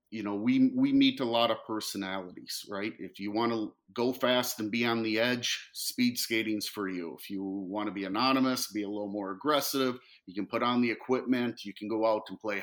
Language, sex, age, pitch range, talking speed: English, male, 50-69, 100-130 Hz, 230 wpm